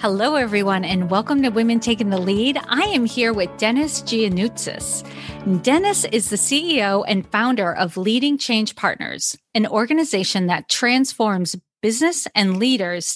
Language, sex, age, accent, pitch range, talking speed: English, female, 40-59, American, 200-275 Hz, 145 wpm